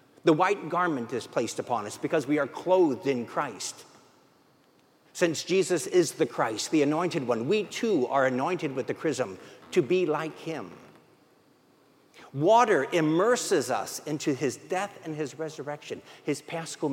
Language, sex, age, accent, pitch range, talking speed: English, male, 50-69, American, 150-205 Hz, 150 wpm